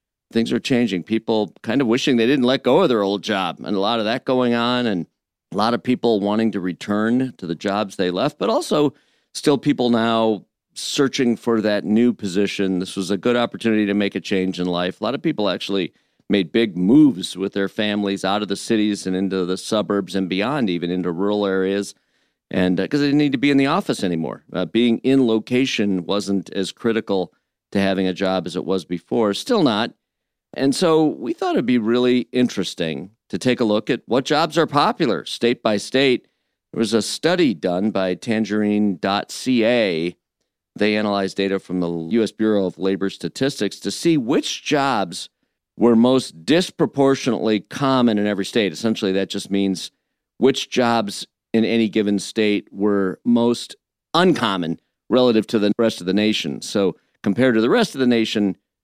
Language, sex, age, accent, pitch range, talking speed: English, male, 50-69, American, 95-120 Hz, 190 wpm